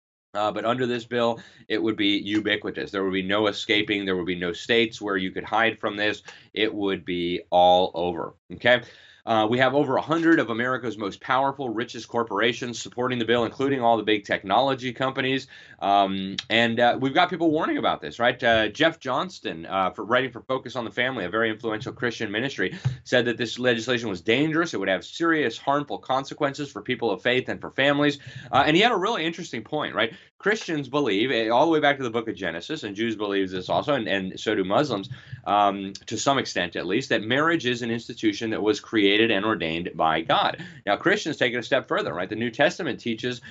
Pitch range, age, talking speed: 105-130 Hz, 30-49, 215 wpm